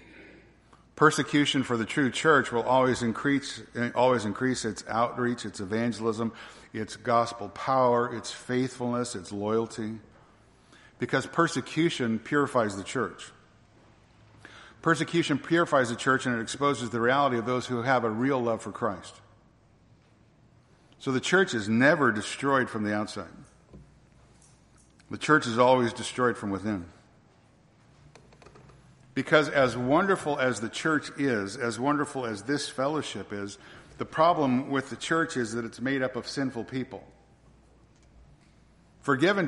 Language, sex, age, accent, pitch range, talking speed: English, male, 50-69, American, 115-135 Hz, 130 wpm